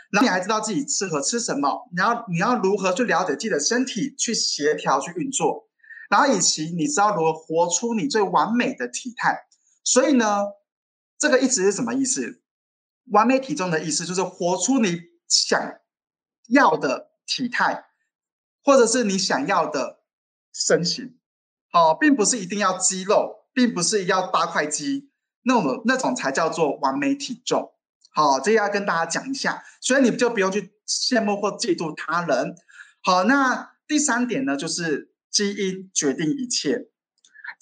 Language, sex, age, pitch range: Chinese, male, 20-39, 185-270 Hz